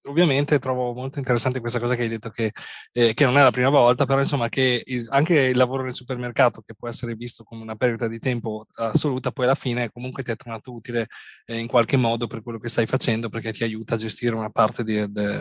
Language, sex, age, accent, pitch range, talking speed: Italian, male, 30-49, native, 115-135 Hz, 240 wpm